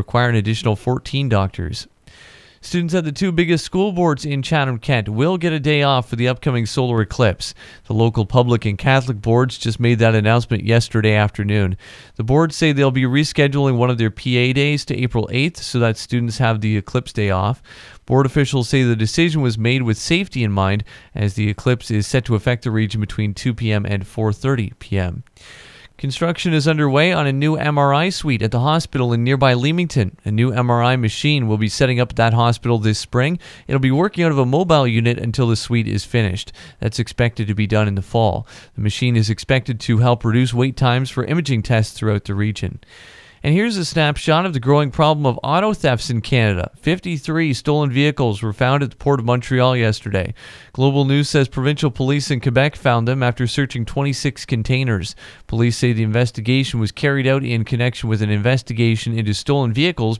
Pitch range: 110-140 Hz